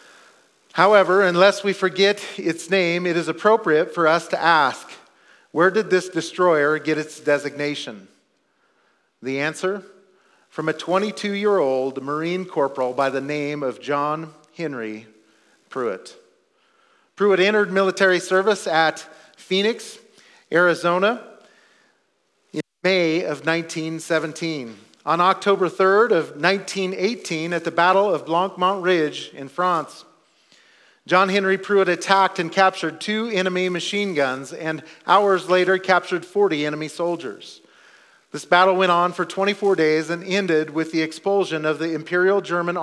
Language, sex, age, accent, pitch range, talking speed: English, male, 40-59, American, 155-190 Hz, 130 wpm